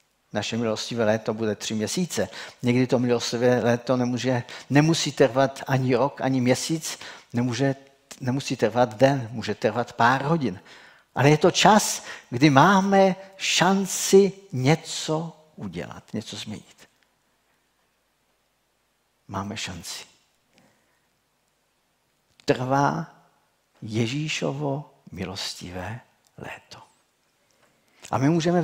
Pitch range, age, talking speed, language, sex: 125-155 Hz, 50-69, 90 wpm, Czech, male